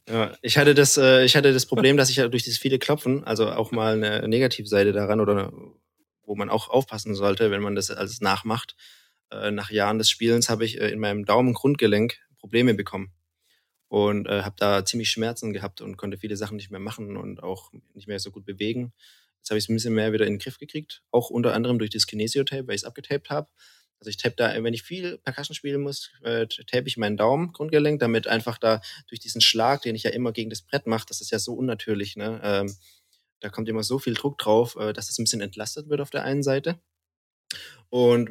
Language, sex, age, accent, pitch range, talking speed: German, male, 20-39, German, 105-125 Hz, 215 wpm